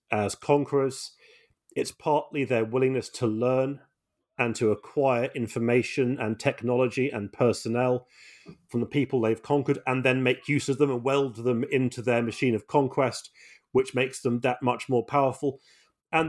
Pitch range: 120-145 Hz